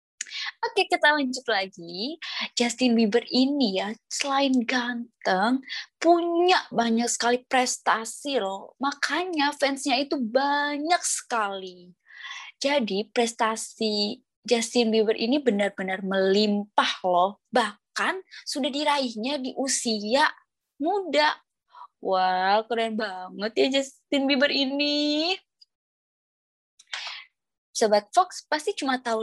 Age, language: 20-39, Indonesian